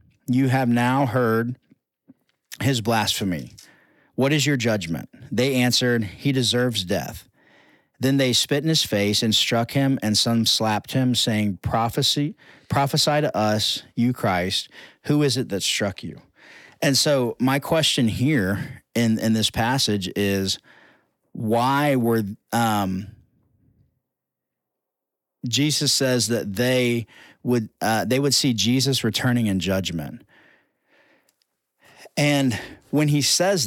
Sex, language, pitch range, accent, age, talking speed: male, English, 110-135 Hz, American, 40-59, 125 wpm